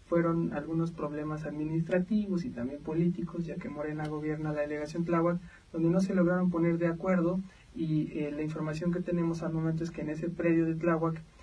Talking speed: 190 wpm